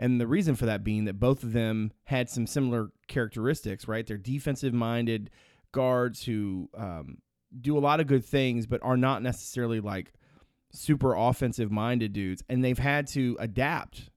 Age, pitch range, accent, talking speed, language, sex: 30-49, 110-135 Hz, American, 165 wpm, English, male